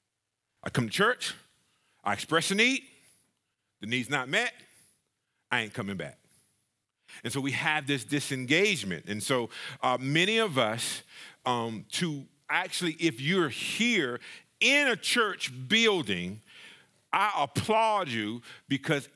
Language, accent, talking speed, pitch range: English, American, 130 wpm, 155-225 Hz